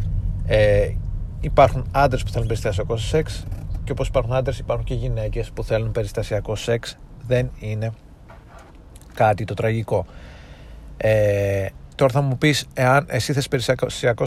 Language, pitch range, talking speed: Greek, 100-125 Hz, 125 wpm